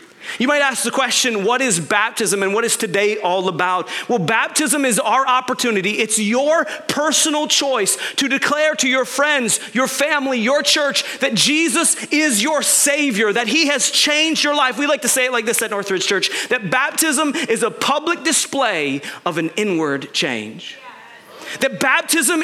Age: 30-49